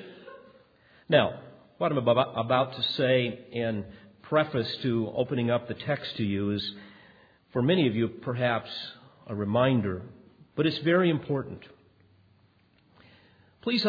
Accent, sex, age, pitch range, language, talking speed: American, male, 50-69, 115-150 Hz, English, 120 wpm